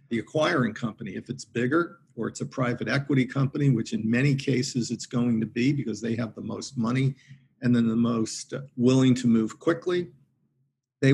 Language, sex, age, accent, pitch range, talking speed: English, male, 50-69, American, 115-135 Hz, 190 wpm